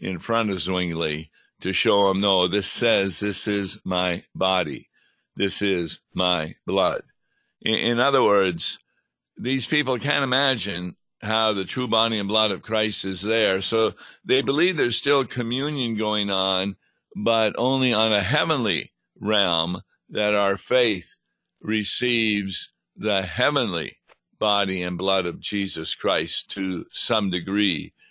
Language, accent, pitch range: English, American, 95-115 Hz